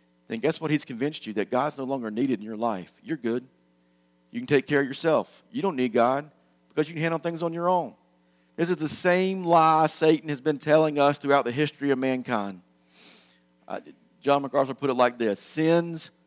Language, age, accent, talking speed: English, 40-59, American, 210 wpm